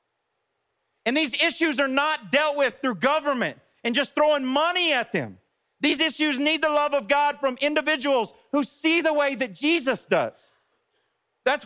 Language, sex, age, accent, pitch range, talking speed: English, male, 40-59, American, 235-310 Hz, 165 wpm